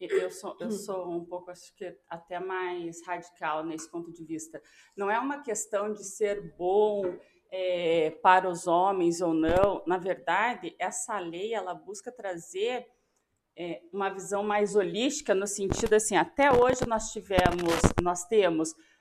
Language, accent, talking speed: Portuguese, Brazilian, 140 wpm